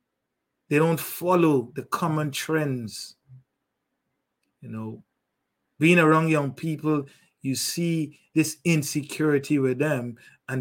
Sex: male